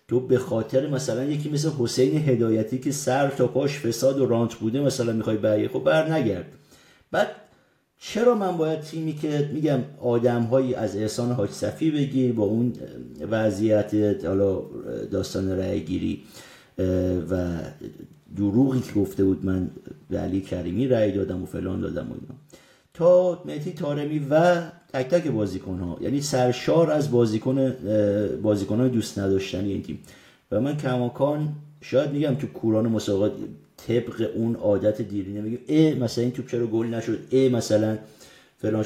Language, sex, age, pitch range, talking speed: Persian, male, 50-69, 100-135 Hz, 150 wpm